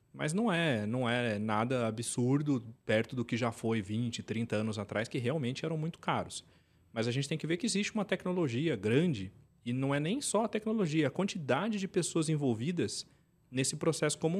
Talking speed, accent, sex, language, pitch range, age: 195 wpm, Brazilian, male, Portuguese, 110-155 Hz, 40-59